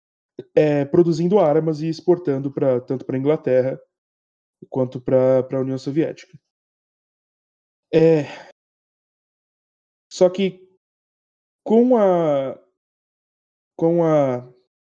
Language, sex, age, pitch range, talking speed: Portuguese, male, 20-39, 140-170 Hz, 70 wpm